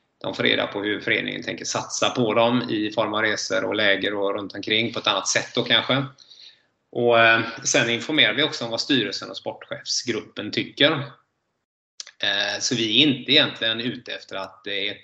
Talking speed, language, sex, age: 190 wpm, Swedish, male, 20-39